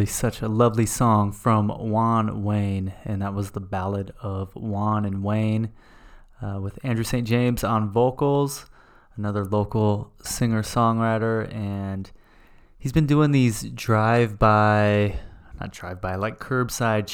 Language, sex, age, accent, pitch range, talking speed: English, male, 20-39, American, 105-115 Hz, 125 wpm